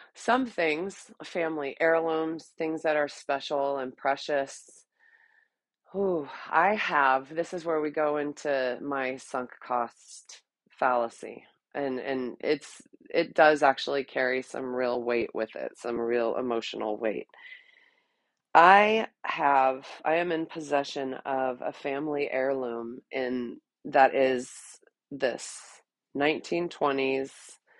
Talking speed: 115 wpm